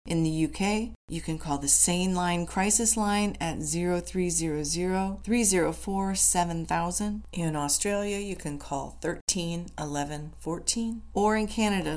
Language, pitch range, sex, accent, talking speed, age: English, 150-185 Hz, female, American, 110 wpm, 40-59